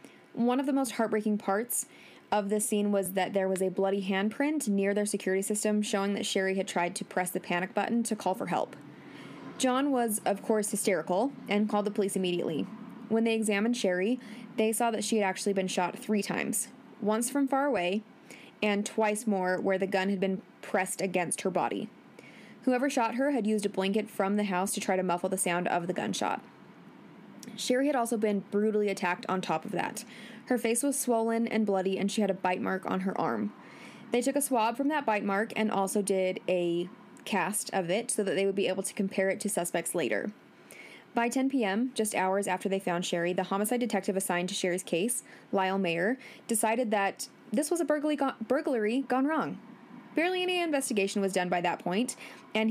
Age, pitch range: 20-39, 190-235 Hz